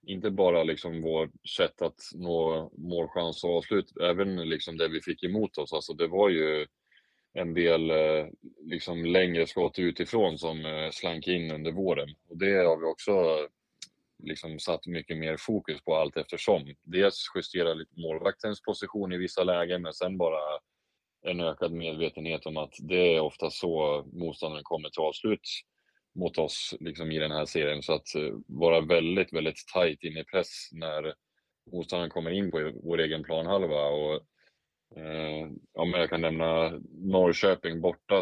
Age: 20-39